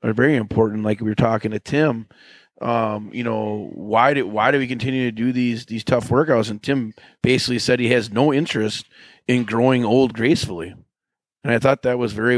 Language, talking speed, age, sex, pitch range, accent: English, 205 wpm, 30-49, male, 110-130 Hz, American